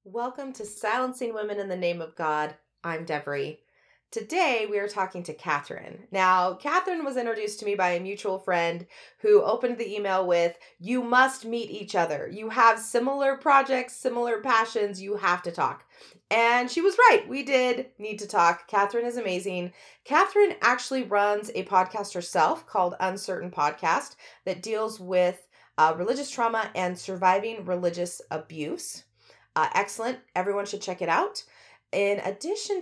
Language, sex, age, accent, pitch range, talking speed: English, female, 30-49, American, 170-235 Hz, 160 wpm